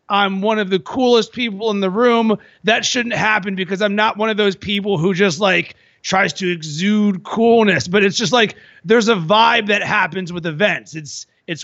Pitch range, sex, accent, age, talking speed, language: 190-220 Hz, male, American, 30-49, 200 wpm, English